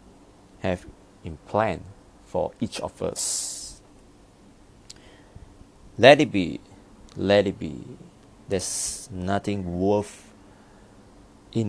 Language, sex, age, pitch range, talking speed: English, male, 30-49, 95-100 Hz, 85 wpm